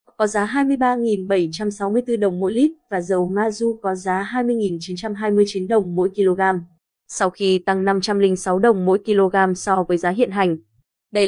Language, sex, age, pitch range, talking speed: Vietnamese, female, 20-39, 185-230 Hz, 150 wpm